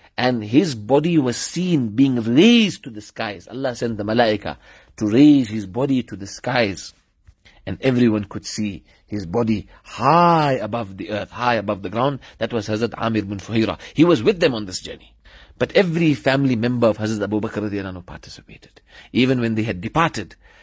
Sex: male